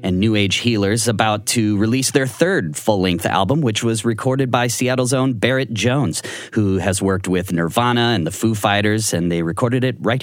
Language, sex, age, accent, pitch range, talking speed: English, male, 30-49, American, 95-135 Hz, 195 wpm